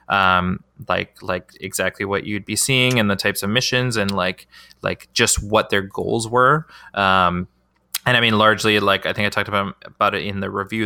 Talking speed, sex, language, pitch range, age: 205 wpm, male, English, 100-110 Hz, 20-39